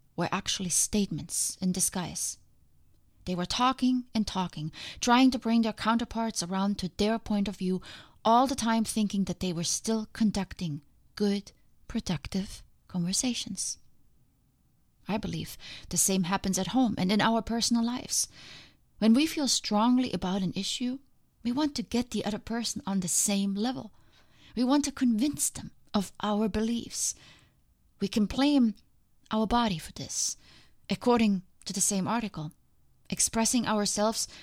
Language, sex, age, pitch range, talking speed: English, female, 30-49, 185-230 Hz, 150 wpm